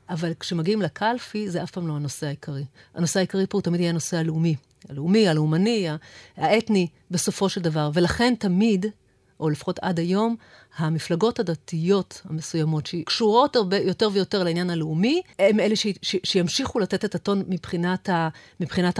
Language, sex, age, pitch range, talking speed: Hebrew, female, 40-59, 170-210 Hz, 160 wpm